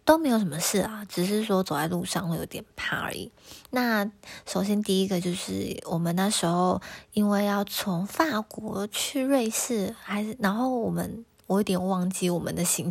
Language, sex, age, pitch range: Chinese, female, 20-39, 175-210 Hz